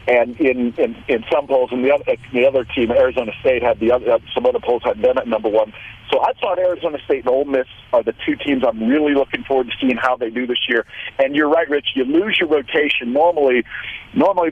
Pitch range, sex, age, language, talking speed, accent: 130-175 Hz, male, 50-69, English, 240 wpm, American